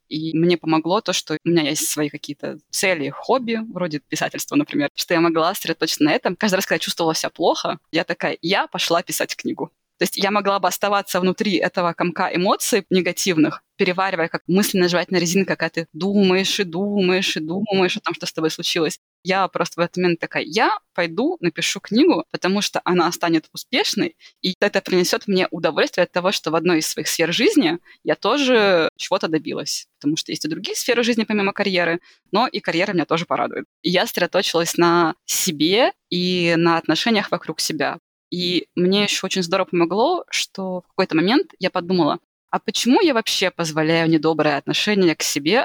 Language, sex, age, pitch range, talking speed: Russian, female, 20-39, 165-200 Hz, 190 wpm